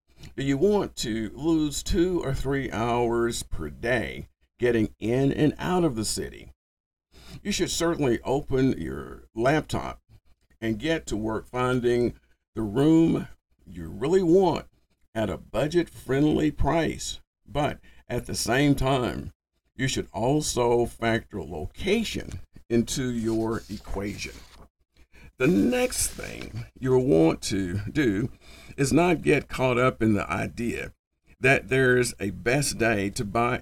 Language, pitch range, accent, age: English, 95-135 Hz, American, 50-69